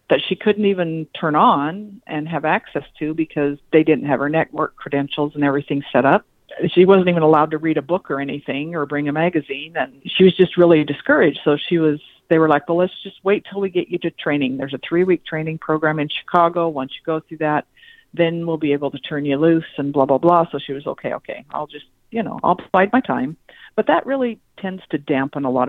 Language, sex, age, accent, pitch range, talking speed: English, female, 50-69, American, 145-180 Hz, 240 wpm